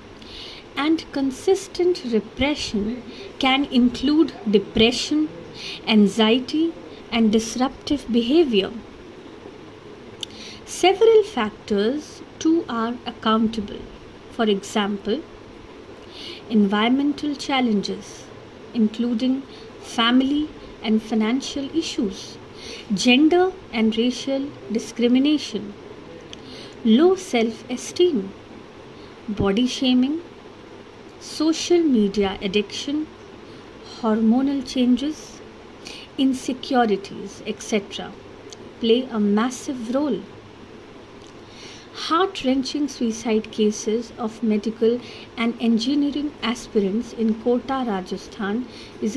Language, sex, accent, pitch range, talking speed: English, female, Indian, 220-285 Hz, 70 wpm